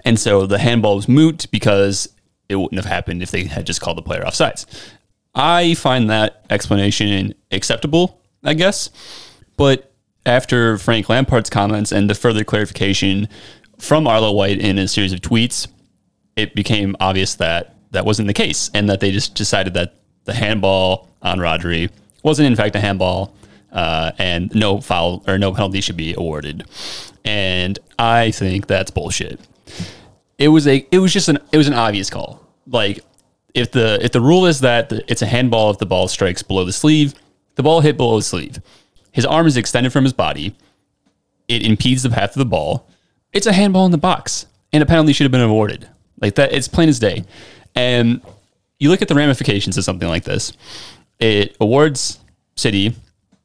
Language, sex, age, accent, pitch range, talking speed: English, male, 30-49, American, 95-125 Hz, 185 wpm